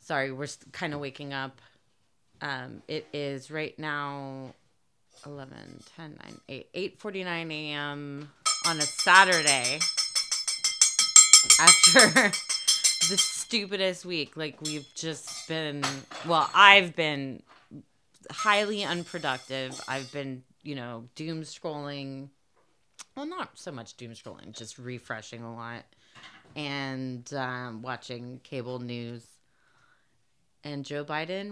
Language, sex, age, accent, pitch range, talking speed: English, female, 30-49, American, 125-160 Hz, 110 wpm